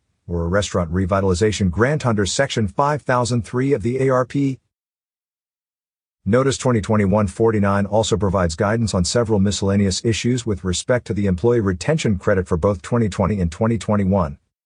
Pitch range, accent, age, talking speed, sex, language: 95-120 Hz, American, 50-69, 130 wpm, male, English